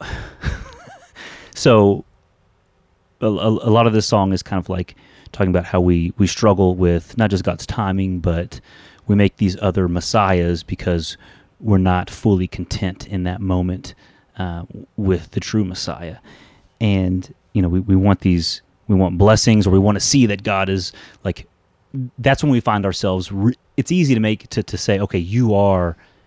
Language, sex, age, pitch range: English, male, 30-49, 90-110 Hz